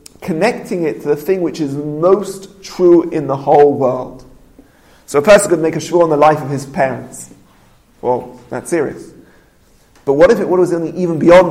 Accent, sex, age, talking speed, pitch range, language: British, male, 30-49, 190 wpm, 150-185 Hz, English